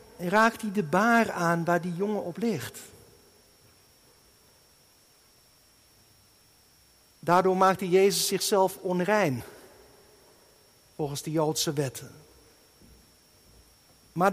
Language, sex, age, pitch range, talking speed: Dutch, male, 60-79, 145-210 Hz, 90 wpm